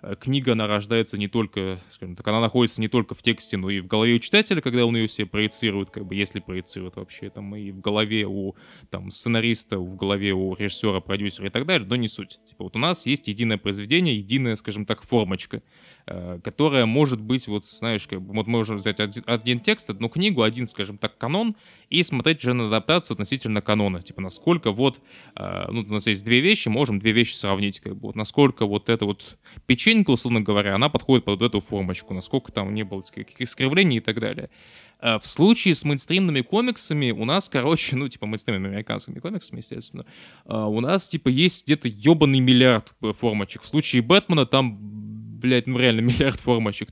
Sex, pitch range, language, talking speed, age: male, 105-130 Hz, Russian, 195 wpm, 20-39